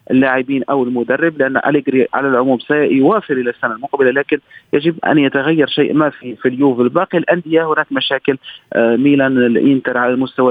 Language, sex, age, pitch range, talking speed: Arabic, male, 40-59, 130-155 Hz, 160 wpm